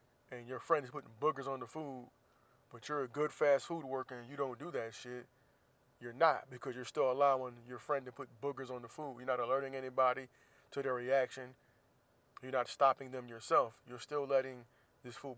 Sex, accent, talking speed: male, American, 205 wpm